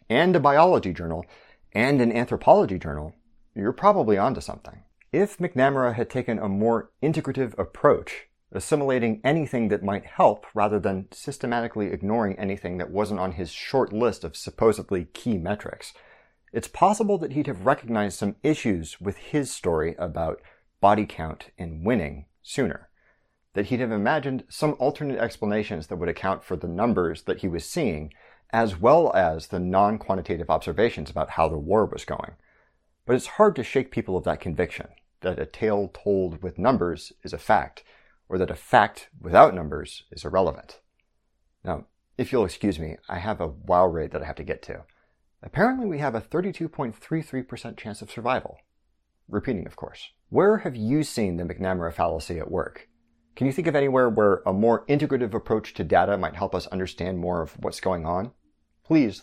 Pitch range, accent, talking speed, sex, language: 90-130 Hz, American, 170 wpm, male, English